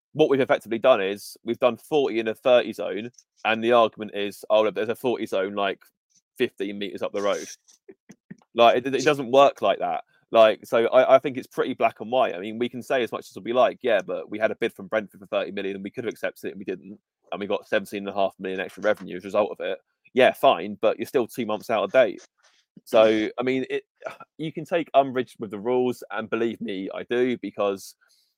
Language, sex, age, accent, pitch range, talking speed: English, male, 20-39, British, 110-135 Hz, 245 wpm